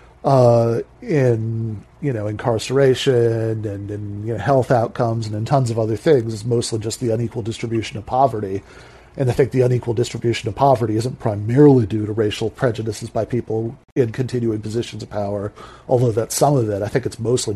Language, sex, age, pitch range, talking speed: English, male, 40-59, 110-125 Hz, 190 wpm